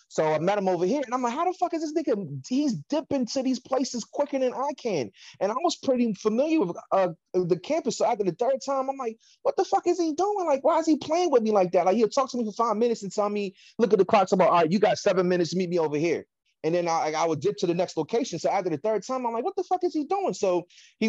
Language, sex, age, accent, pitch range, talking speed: English, male, 30-49, American, 155-260 Hz, 305 wpm